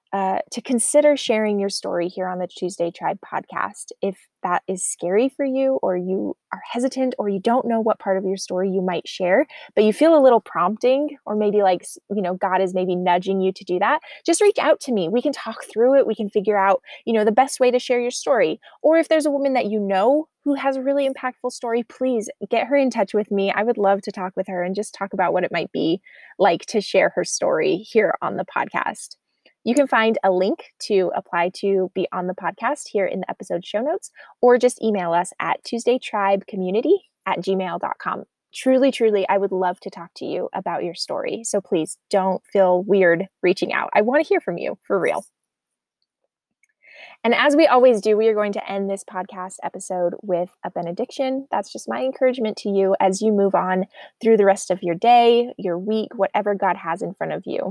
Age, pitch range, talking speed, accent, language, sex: 20-39, 190-255 Hz, 225 wpm, American, English, female